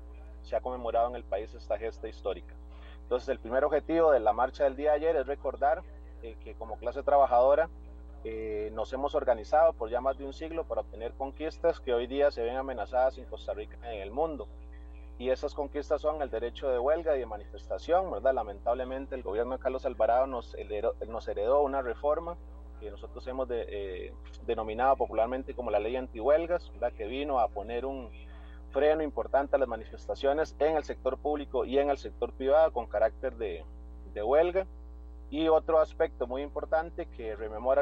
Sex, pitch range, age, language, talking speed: male, 110-150 Hz, 30-49, Spanish, 190 wpm